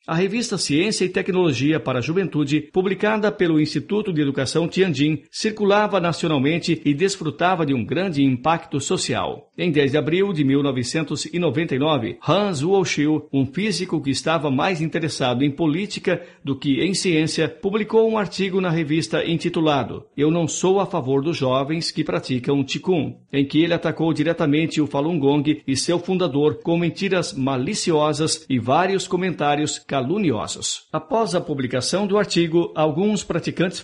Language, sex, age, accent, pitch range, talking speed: Portuguese, male, 50-69, Brazilian, 145-185 Hz, 145 wpm